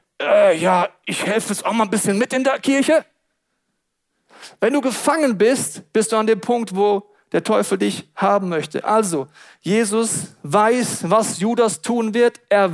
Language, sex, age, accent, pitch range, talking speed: German, male, 40-59, German, 175-235 Hz, 165 wpm